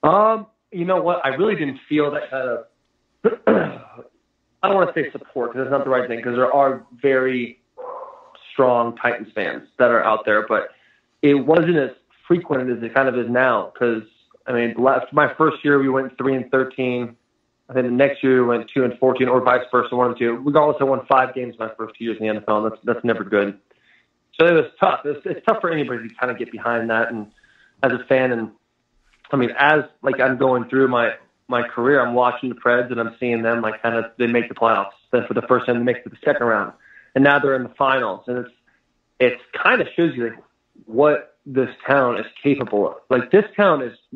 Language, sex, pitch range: English, male, 120-140 Hz